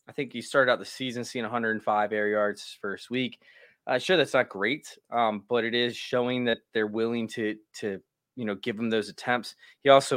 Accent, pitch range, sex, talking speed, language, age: American, 105-125 Hz, male, 210 wpm, English, 20-39